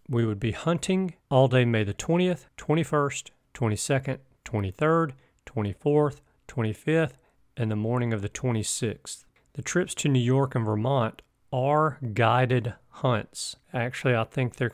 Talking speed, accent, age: 140 wpm, American, 40-59